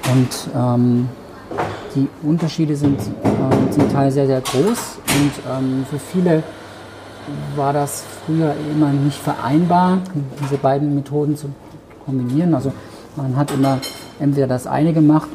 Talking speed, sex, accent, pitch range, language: 135 wpm, male, German, 125-150 Hz, German